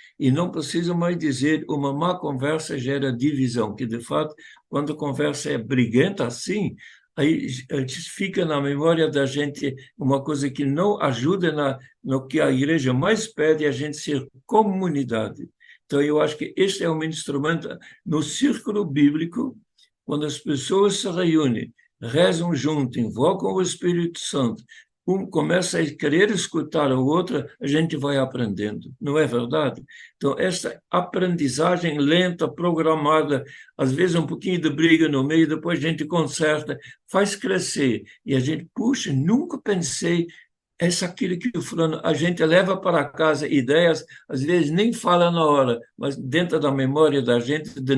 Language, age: Portuguese, 60-79